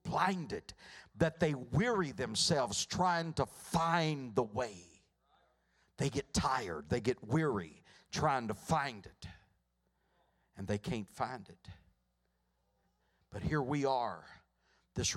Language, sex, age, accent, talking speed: English, male, 60-79, American, 120 wpm